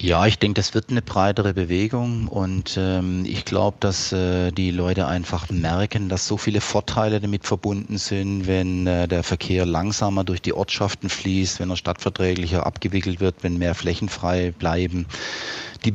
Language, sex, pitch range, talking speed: German, male, 95-115 Hz, 170 wpm